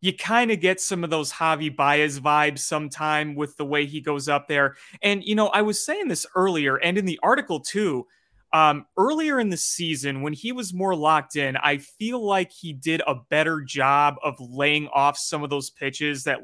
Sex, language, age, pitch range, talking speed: male, English, 30-49, 145-180 Hz, 210 wpm